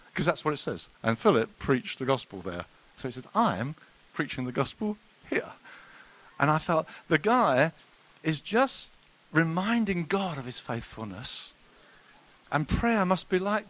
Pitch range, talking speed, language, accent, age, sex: 130-195 Hz, 160 wpm, English, British, 50-69, male